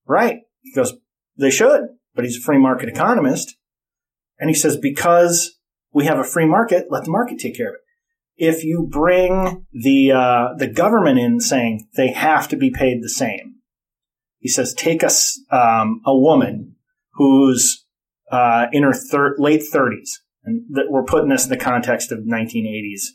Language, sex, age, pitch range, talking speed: English, male, 30-49, 125-175 Hz, 170 wpm